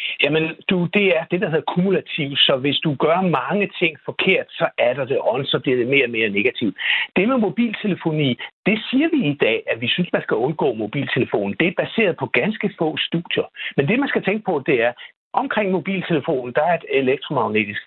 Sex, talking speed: male, 210 wpm